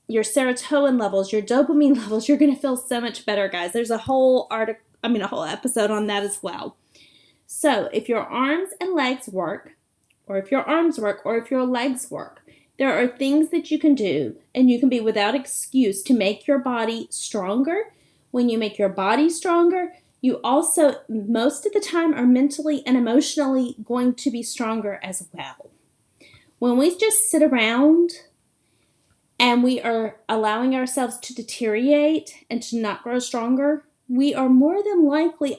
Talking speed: 175 wpm